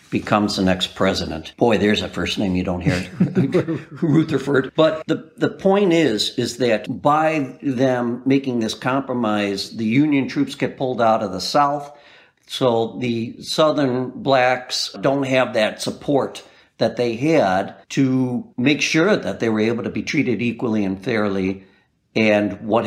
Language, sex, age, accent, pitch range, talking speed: English, male, 60-79, American, 110-140 Hz, 155 wpm